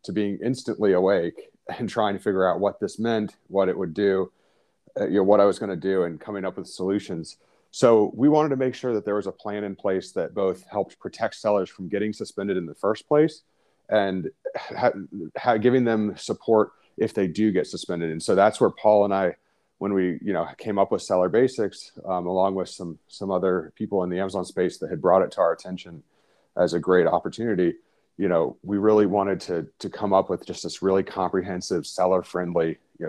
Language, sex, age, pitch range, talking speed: English, male, 30-49, 90-105 Hz, 215 wpm